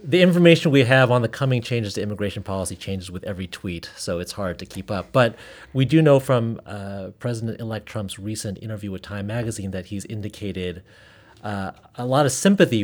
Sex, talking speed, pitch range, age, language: male, 195 wpm, 95-125 Hz, 30-49, English